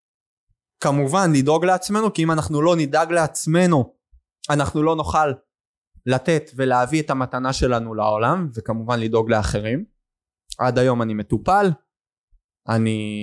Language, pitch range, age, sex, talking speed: Hebrew, 110-165 Hz, 20-39, male, 120 wpm